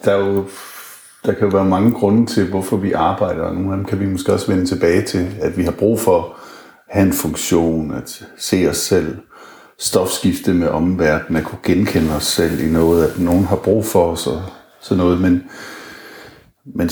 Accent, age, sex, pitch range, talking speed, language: native, 60-79, male, 85-105 Hz, 205 wpm, Danish